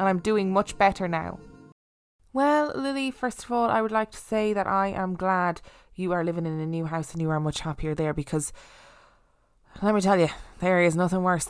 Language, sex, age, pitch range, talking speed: English, female, 20-39, 155-200 Hz, 220 wpm